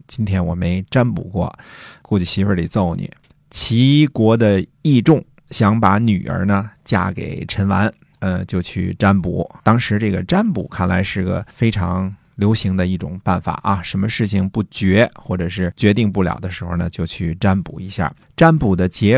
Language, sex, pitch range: Chinese, male, 95-120 Hz